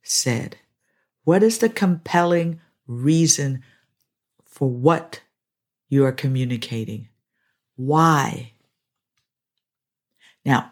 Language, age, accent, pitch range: English, 50-69, American, 130-185 Hz